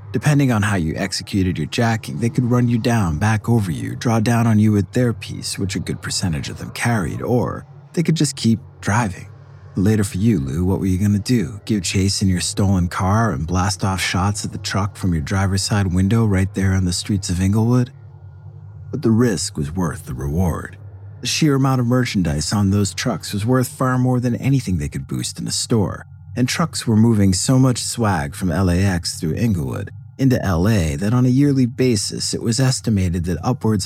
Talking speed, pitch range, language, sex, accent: 210 wpm, 95-120 Hz, English, male, American